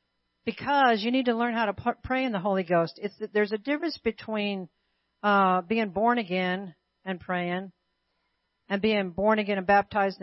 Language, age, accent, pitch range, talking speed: English, 50-69, American, 190-225 Hz, 165 wpm